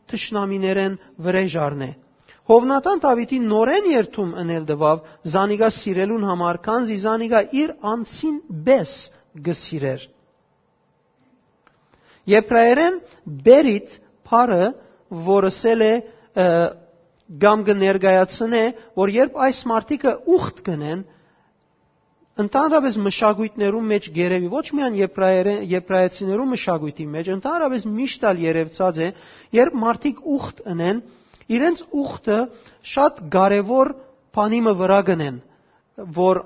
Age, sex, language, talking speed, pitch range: 40-59, male, English, 95 wpm, 185-250 Hz